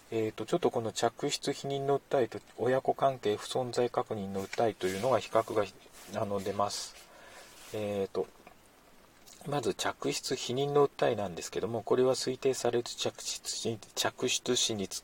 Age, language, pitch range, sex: 40-59, Japanese, 100-130 Hz, male